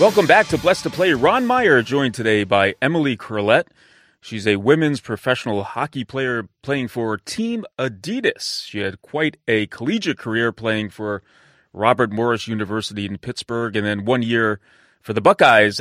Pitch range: 105-135 Hz